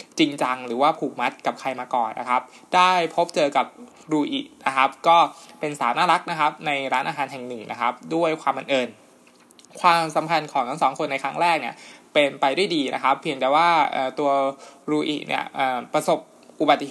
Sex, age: male, 20-39